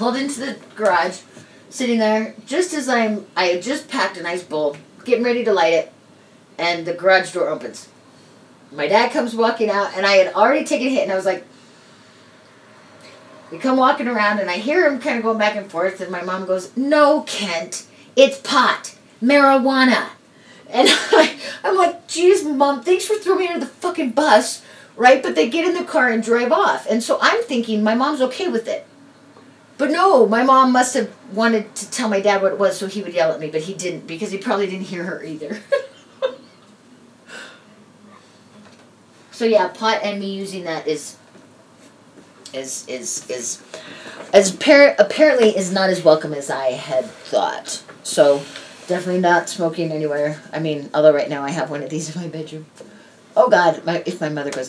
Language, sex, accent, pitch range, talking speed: English, female, American, 170-270 Hz, 190 wpm